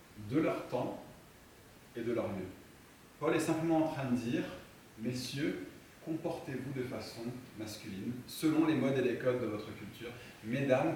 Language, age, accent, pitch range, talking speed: French, 30-49, French, 110-145 Hz, 160 wpm